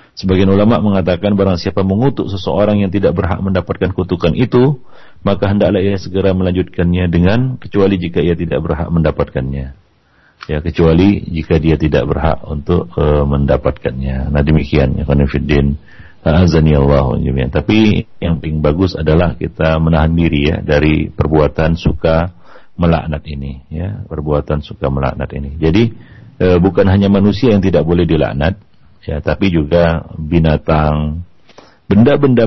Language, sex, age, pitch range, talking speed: Malay, male, 40-59, 80-100 Hz, 130 wpm